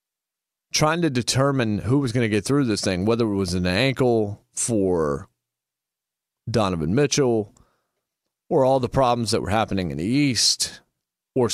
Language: English